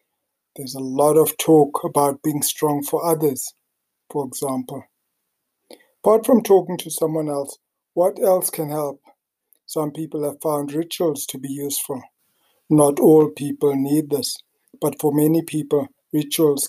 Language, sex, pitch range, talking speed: English, male, 140-160 Hz, 145 wpm